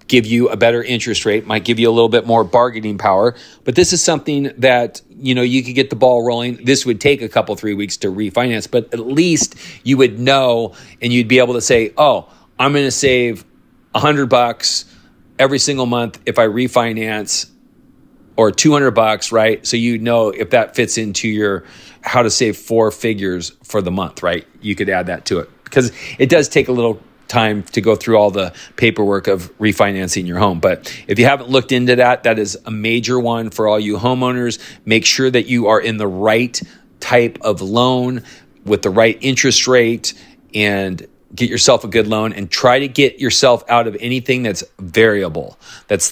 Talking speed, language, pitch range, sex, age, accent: 200 wpm, English, 110-125 Hz, male, 40-59, American